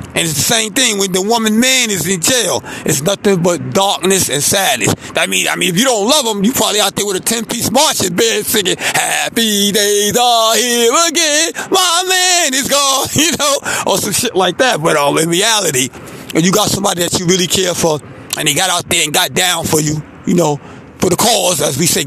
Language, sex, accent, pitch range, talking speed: English, male, American, 180-240 Hz, 235 wpm